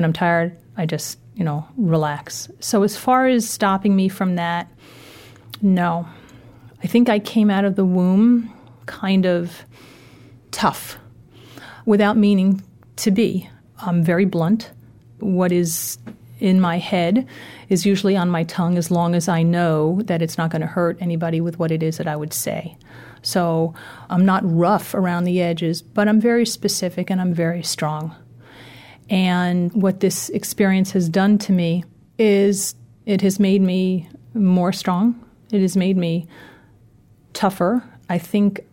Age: 40-59